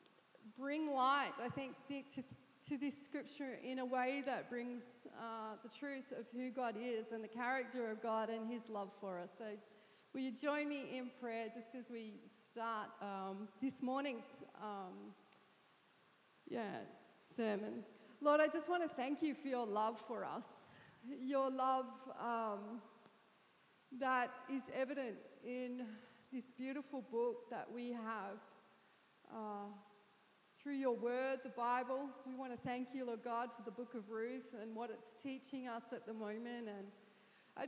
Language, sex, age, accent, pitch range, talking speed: English, female, 40-59, Australian, 230-275 Hz, 160 wpm